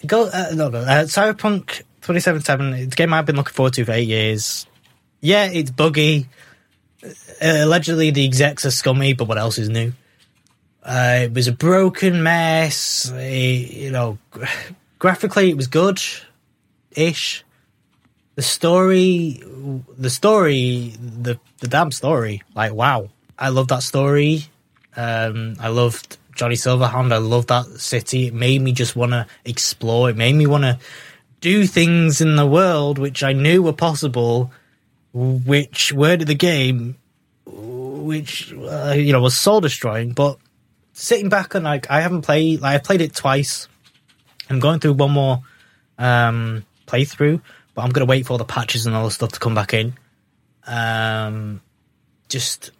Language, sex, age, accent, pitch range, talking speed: English, male, 20-39, British, 120-155 Hz, 160 wpm